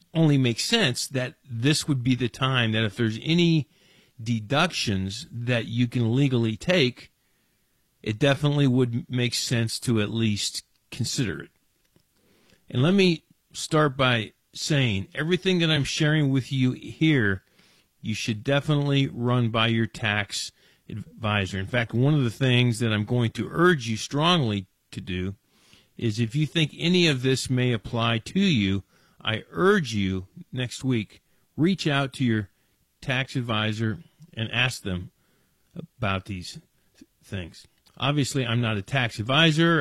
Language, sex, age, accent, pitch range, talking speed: English, male, 50-69, American, 110-145 Hz, 150 wpm